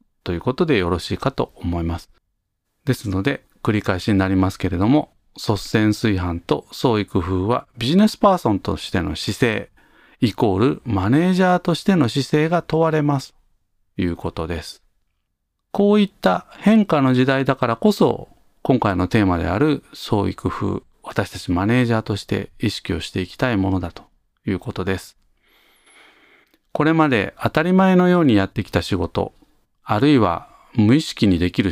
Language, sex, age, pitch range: Japanese, male, 40-59, 95-155 Hz